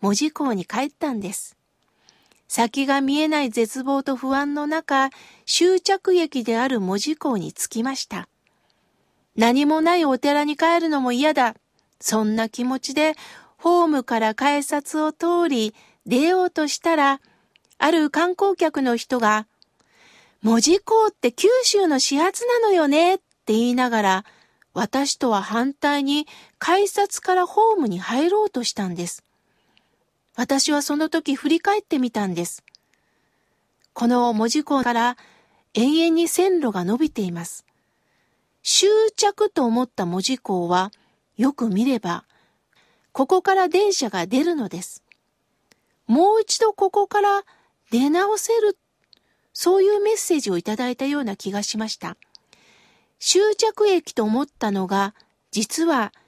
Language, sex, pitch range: Japanese, female, 230-345 Hz